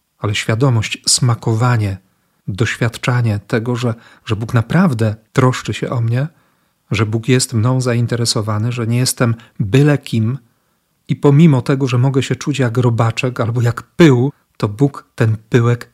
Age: 40-59